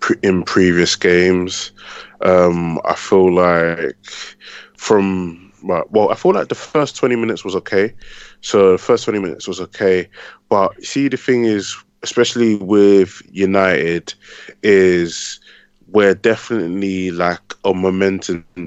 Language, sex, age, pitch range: English, male, 20-39, 85-100 Hz